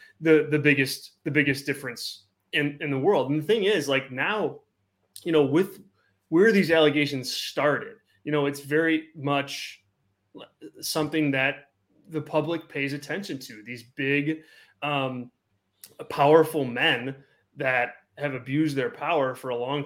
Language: English